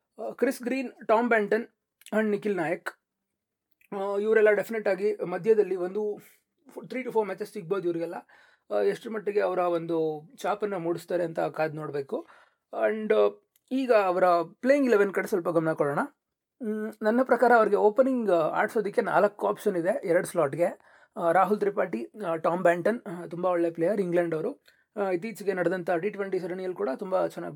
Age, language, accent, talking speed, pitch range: 30-49, Kannada, native, 135 wpm, 175-215 Hz